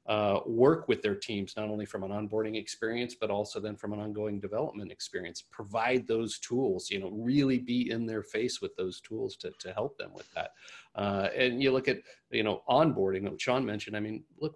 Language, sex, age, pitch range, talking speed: English, male, 40-59, 100-125 Hz, 210 wpm